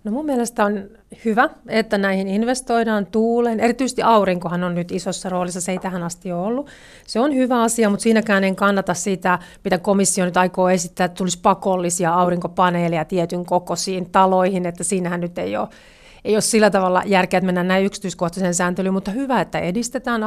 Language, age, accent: Finnish, 40-59, native